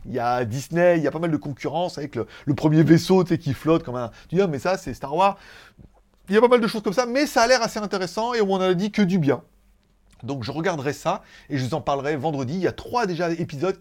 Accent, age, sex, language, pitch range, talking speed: French, 30-49, male, French, 150-205 Hz, 295 wpm